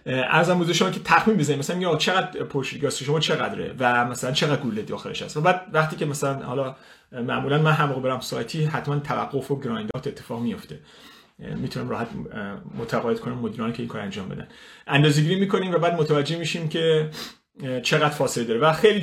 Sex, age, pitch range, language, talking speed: male, 30-49, 130-175 Hz, Persian, 180 wpm